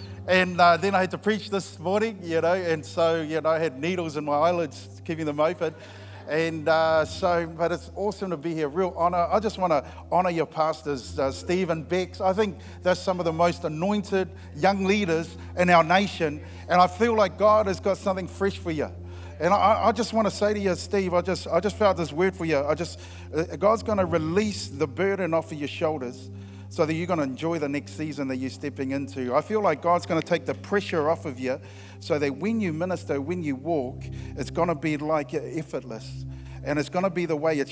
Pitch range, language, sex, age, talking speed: 135-180 Hz, English, male, 50-69, 225 wpm